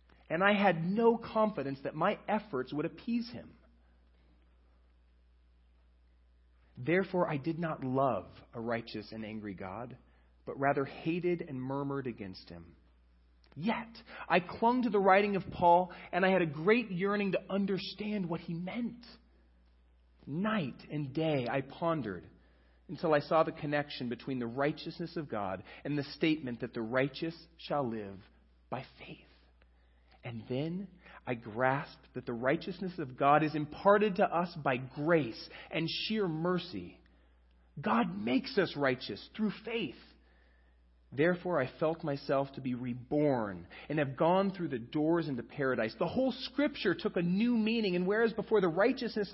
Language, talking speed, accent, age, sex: English, 150 wpm, American, 40-59, male